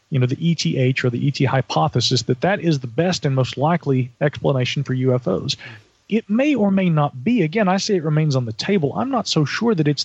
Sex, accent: male, American